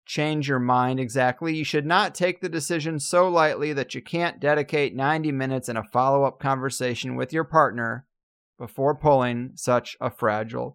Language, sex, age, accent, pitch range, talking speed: English, male, 30-49, American, 125-155 Hz, 165 wpm